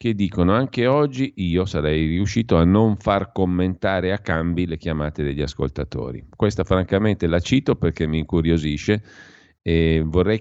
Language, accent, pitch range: Italian, native, 80-95 Hz